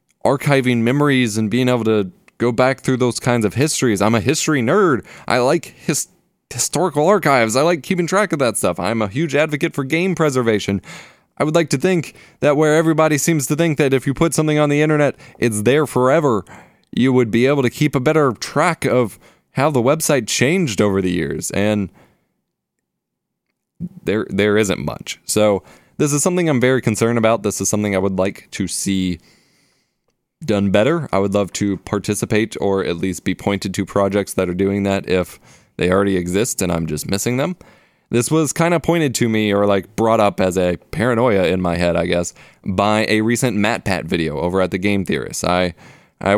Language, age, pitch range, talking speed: English, 20-39, 95-140 Hz, 200 wpm